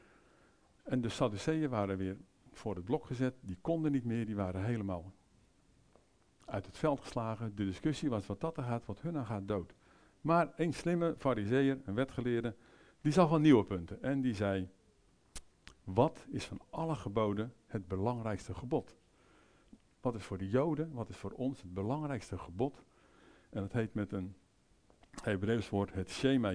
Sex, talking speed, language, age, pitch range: male, 170 wpm, English, 50-69, 95-135 Hz